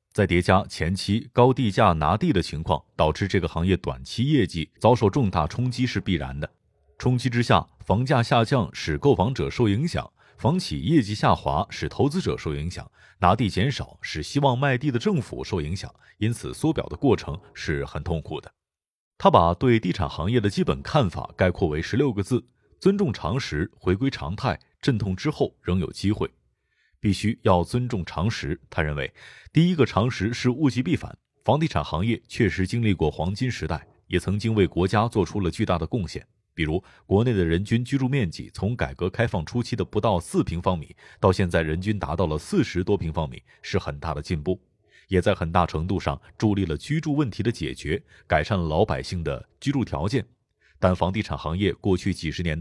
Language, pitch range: Chinese, 85-120 Hz